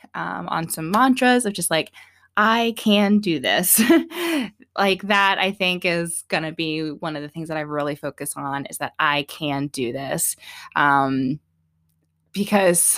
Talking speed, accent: 155 wpm, American